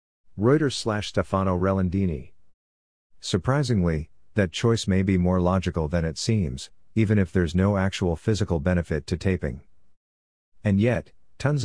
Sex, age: male, 50-69